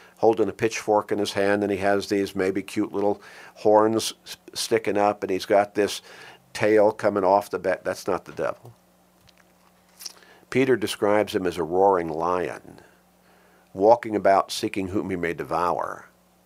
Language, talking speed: English, 155 wpm